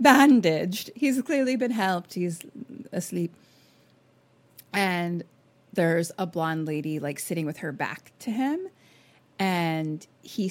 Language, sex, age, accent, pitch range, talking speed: English, female, 30-49, American, 160-215 Hz, 120 wpm